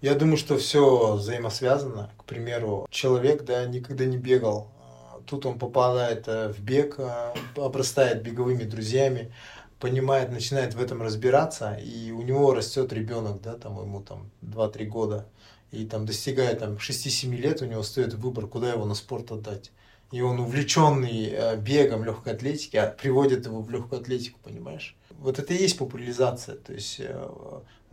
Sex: male